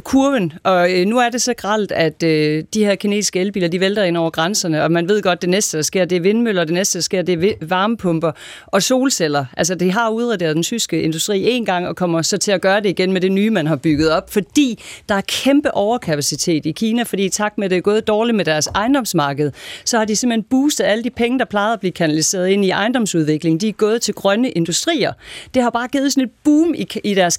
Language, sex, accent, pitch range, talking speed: Danish, female, native, 175-240 Hz, 230 wpm